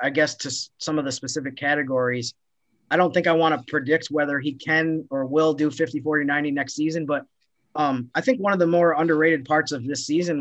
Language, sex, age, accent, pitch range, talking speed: English, male, 30-49, American, 130-160 Hz, 225 wpm